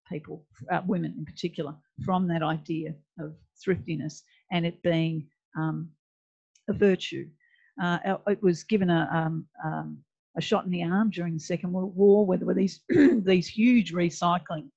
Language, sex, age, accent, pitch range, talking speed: English, female, 50-69, Australian, 155-180 Hz, 165 wpm